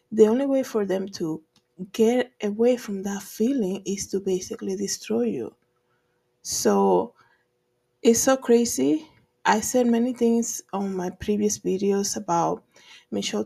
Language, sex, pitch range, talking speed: English, female, 190-230 Hz, 135 wpm